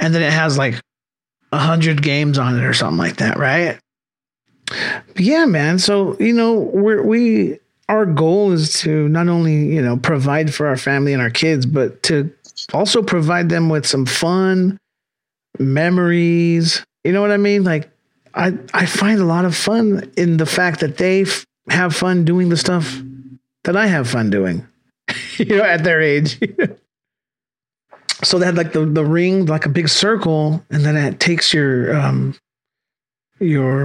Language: English